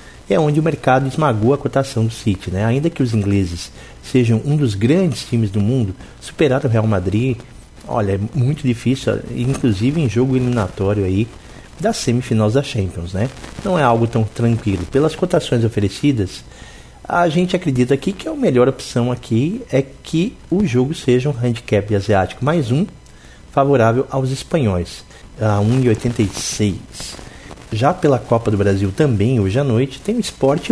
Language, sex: Portuguese, male